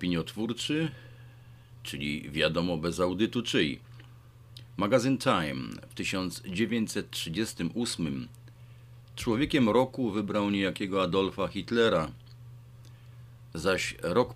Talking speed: 75 wpm